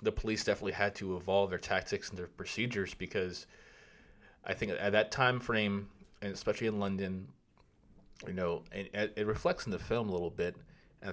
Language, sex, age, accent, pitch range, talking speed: English, male, 30-49, American, 90-105 Hz, 185 wpm